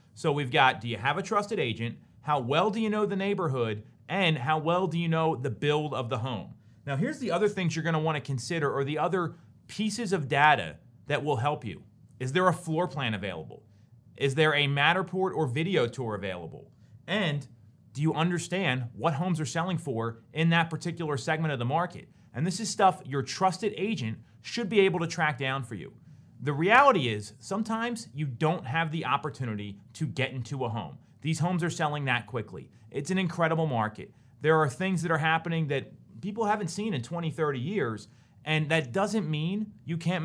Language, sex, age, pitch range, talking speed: English, male, 30-49, 130-175 Hz, 205 wpm